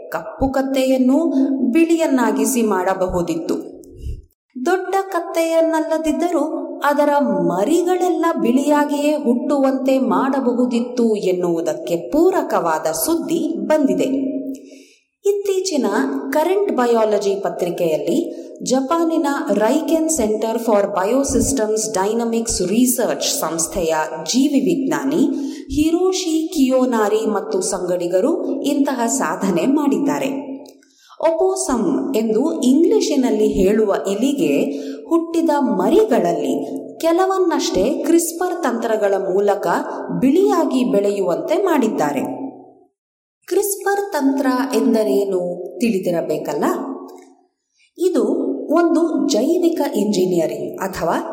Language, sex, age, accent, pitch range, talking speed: Kannada, female, 30-49, native, 220-320 Hz, 70 wpm